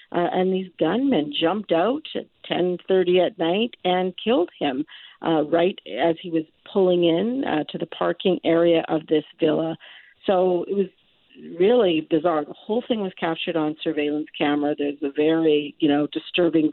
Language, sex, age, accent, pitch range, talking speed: English, female, 50-69, American, 155-175 Hz, 170 wpm